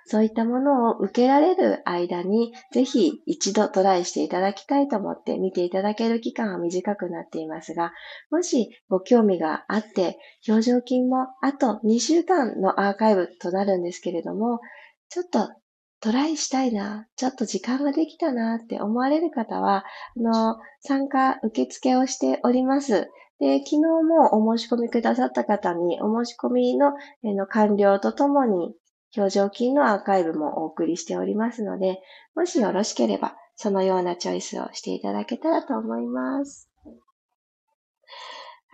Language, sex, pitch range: Japanese, female, 195-280 Hz